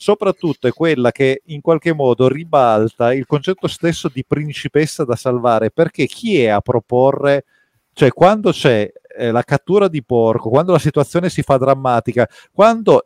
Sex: male